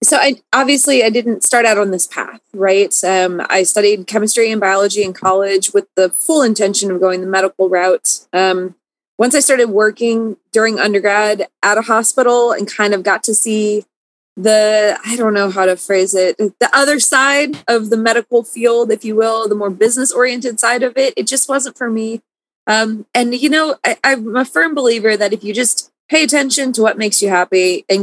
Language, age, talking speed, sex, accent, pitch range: English, 20-39, 200 wpm, female, American, 200-245 Hz